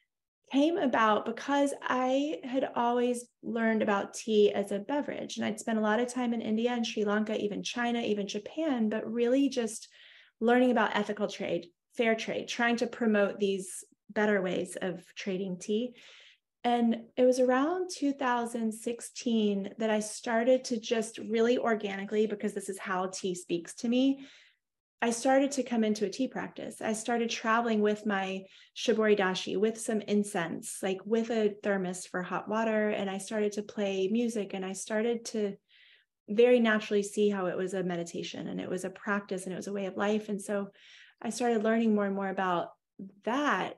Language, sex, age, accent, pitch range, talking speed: English, female, 30-49, American, 200-240 Hz, 180 wpm